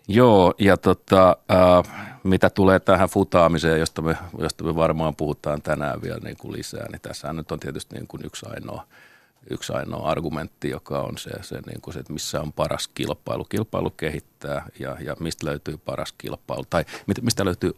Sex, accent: male, native